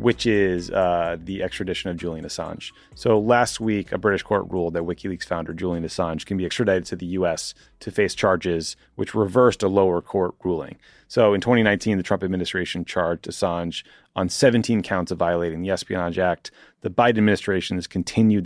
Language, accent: English, American